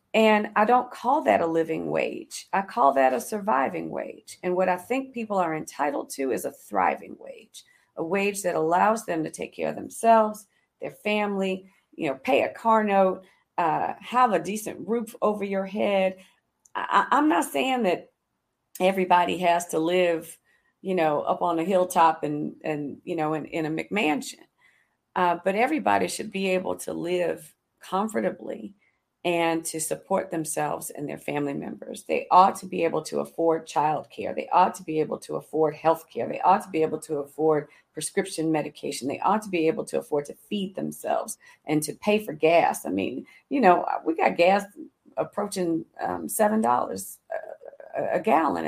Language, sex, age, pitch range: English, female, 40-59, 160-210 Hz